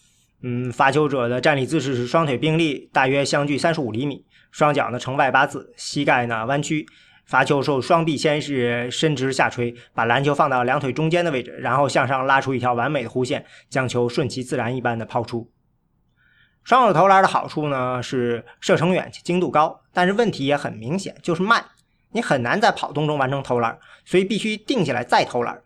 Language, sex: Chinese, male